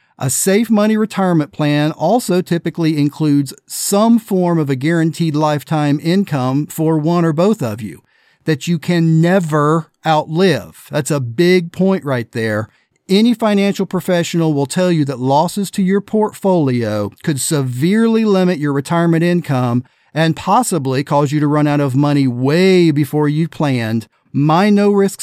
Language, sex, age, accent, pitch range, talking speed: English, male, 40-59, American, 145-185 Hz, 150 wpm